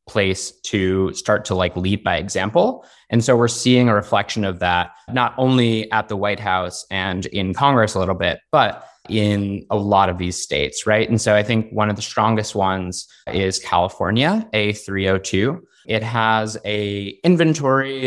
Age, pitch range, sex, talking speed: 20-39, 95-110 Hz, male, 175 wpm